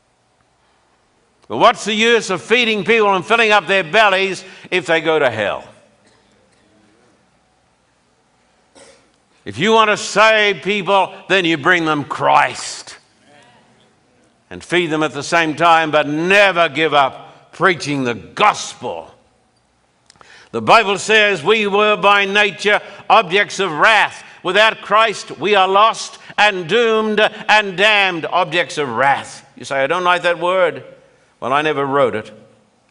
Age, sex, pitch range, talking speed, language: 60-79, male, 165-200 Hz, 140 wpm, English